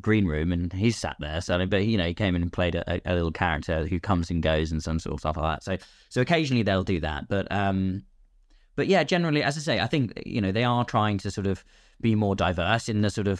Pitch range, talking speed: 85-110 Hz, 275 wpm